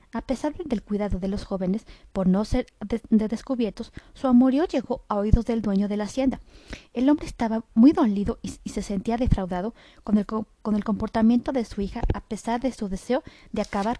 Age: 30-49